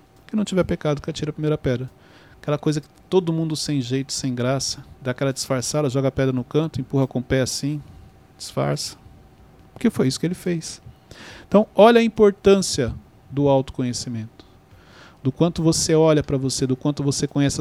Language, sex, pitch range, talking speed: Portuguese, male, 130-165 Hz, 185 wpm